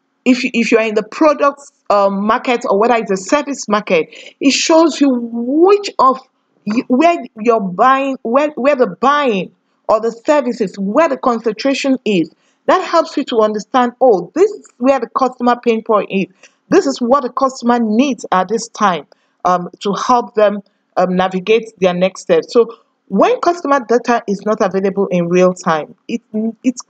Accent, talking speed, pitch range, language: Nigerian, 180 wpm, 200-265 Hz, English